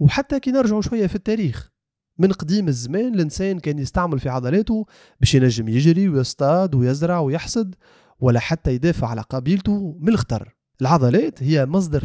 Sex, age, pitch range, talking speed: male, 30-49, 135-205 Hz, 145 wpm